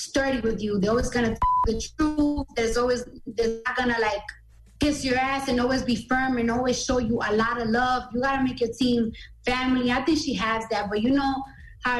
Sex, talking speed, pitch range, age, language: female, 220 wpm, 235-285 Hz, 20-39, English